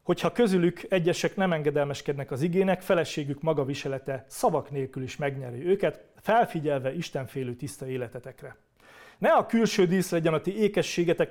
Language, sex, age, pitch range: Hungarian, male, 30-49, 140-185 Hz